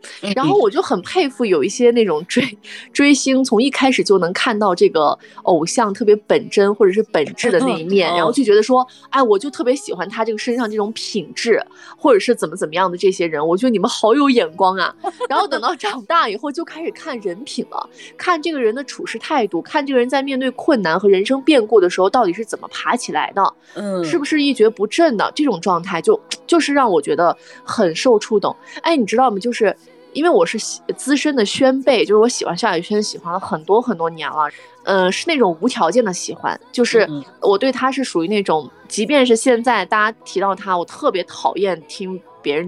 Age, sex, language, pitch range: 20-39, female, Chinese, 200-305 Hz